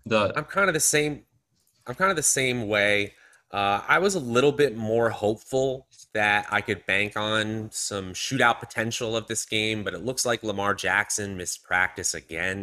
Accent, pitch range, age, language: American, 100-120 Hz, 30-49, English